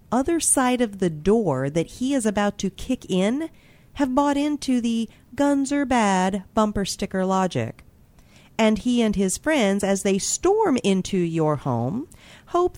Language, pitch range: English, 175-255 Hz